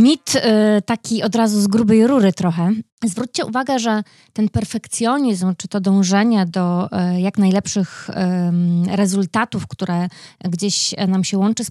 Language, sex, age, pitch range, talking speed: Polish, female, 20-39, 185-220 Hz, 135 wpm